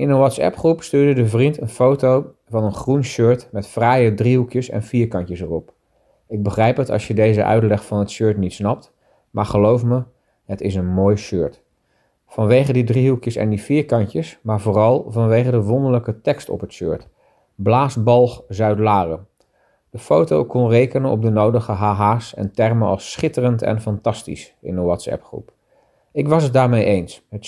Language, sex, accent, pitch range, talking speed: Dutch, male, Dutch, 105-125 Hz, 175 wpm